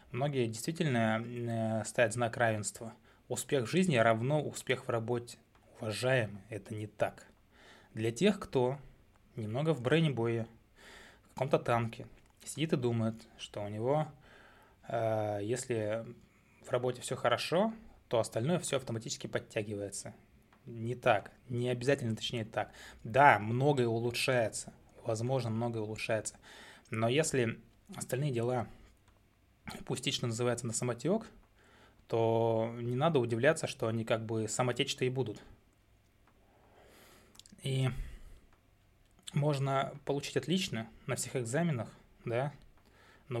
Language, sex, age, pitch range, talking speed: Russian, male, 20-39, 110-130 Hz, 110 wpm